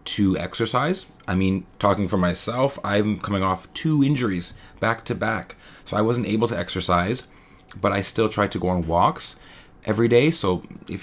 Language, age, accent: English, 30-49, American